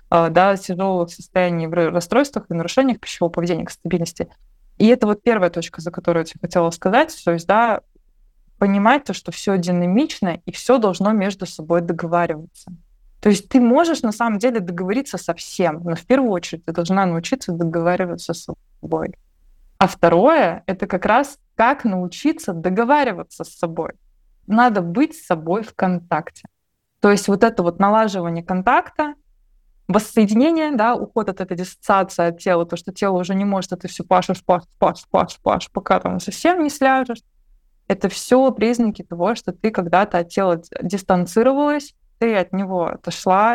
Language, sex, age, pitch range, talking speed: Russian, female, 20-39, 175-225 Hz, 170 wpm